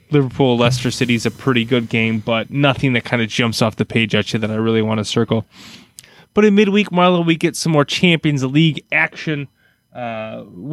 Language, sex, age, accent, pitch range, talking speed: English, male, 20-39, American, 120-150 Hz, 200 wpm